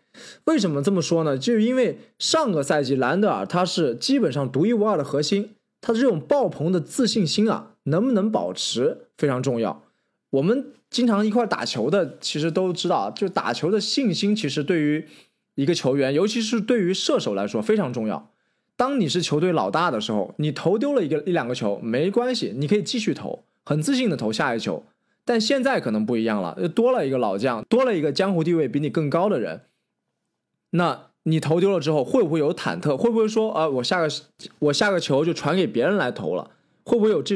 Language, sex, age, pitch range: Chinese, male, 20-39, 150-230 Hz